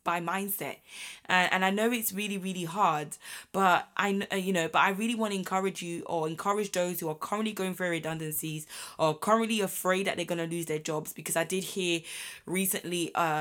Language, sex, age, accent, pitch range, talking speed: English, female, 20-39, British, 160-195 Hz, 205 wpm